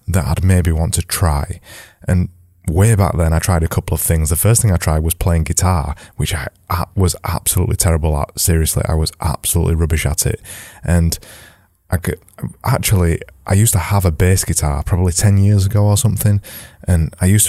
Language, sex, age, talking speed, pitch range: English, male, 20-39, 190 wpm, 85-100 Hz